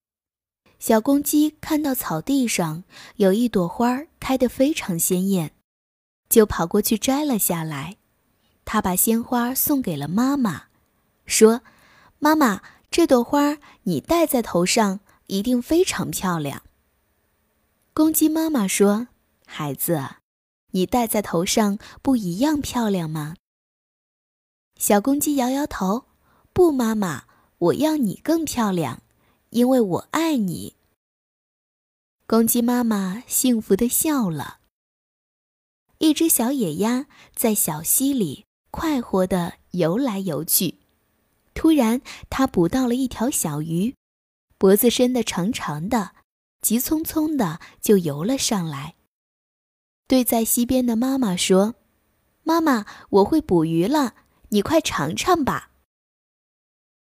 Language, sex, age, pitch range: Chinese, female, 20-39, 190-270 Hz